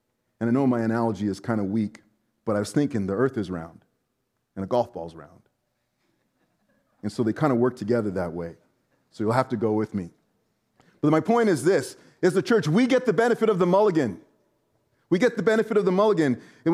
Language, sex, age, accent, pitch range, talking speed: English, male, 30-49, American, 120-195 Hz, 220 wpm